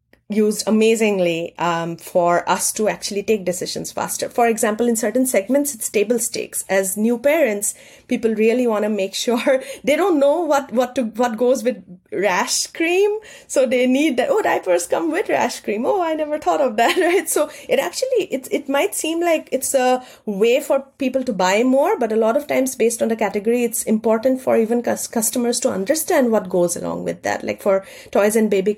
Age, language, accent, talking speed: 30-49, English, Indian, 205 wpm